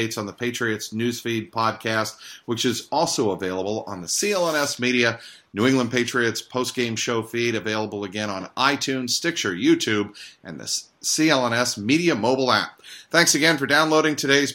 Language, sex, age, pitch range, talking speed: English, male, 40-59, 115-145 Hz, 150 wpm